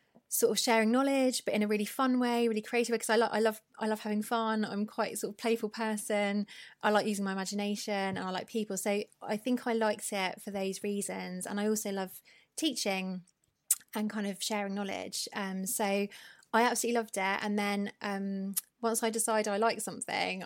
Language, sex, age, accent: English, female, 20-39, British